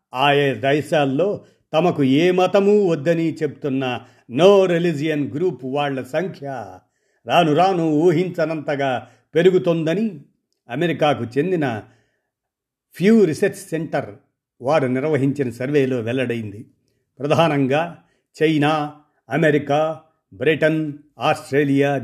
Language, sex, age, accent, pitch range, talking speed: Telugu, male, 50-69, native, 130-160 Hz, 80 wpm